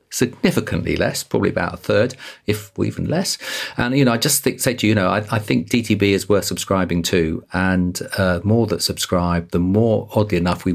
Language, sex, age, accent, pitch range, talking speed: English, male, 40-59, British, 85-110 Hz, 210 wpm